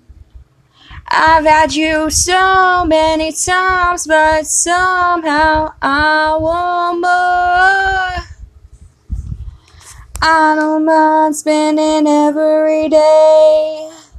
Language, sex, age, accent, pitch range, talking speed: English, female, 10-29, American, 300-350 Hz, 70 wpm